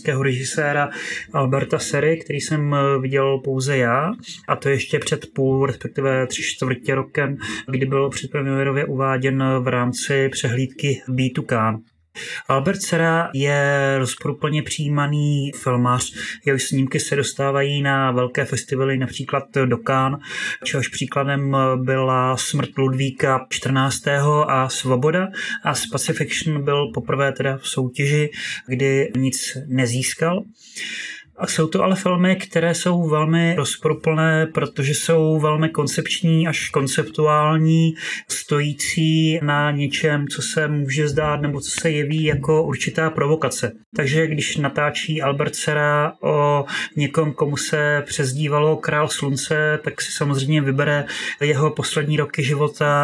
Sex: male